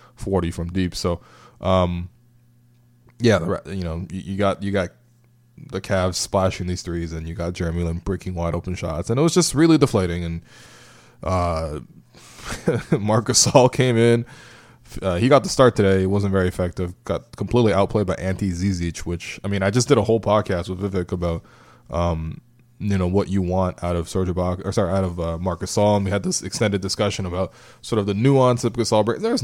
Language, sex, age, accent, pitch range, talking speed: English, male, 20-39, American, 90-115 Hz, 195 wpm